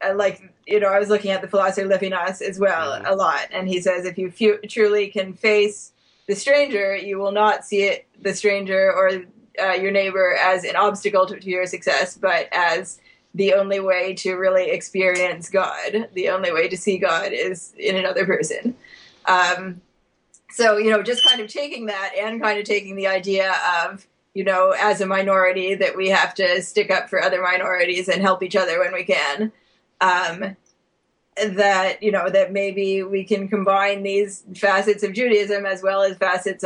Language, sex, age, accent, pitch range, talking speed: English, female, 20-39, American, 185-205 Hz, 190 wpm